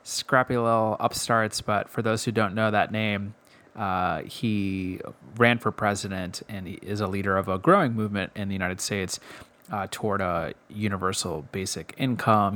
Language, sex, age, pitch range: English, male, 20-39, 95-115 Hz